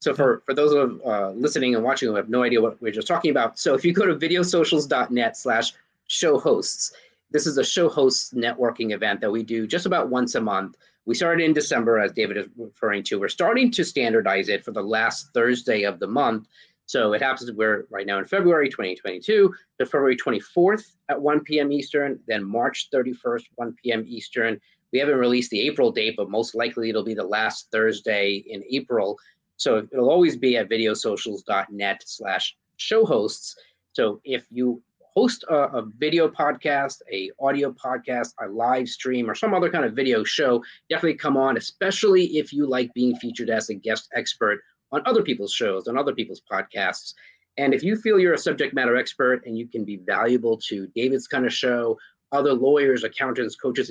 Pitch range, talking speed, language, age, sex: 115-165 Hz, 195 wpm, English, 30-49, male